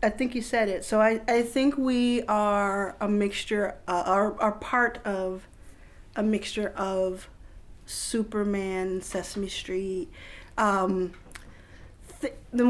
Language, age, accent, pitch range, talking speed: English, 40-59, American, 180-215 Hz, 130 wpm